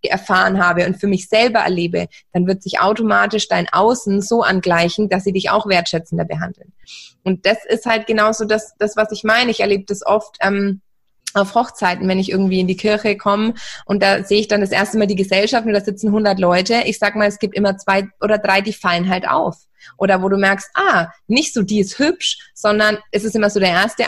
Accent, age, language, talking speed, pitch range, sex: German, 20-39, German, 225 wpm, 190-215 Hz, female